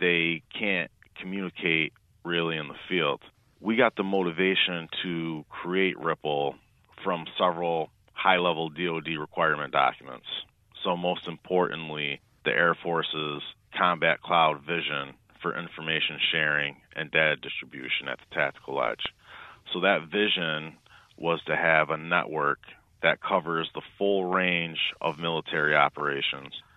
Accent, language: American, English